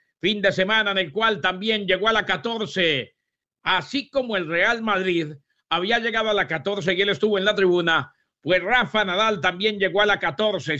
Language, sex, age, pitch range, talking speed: English, male, 50-69, 180-210 Hz, 195 wpm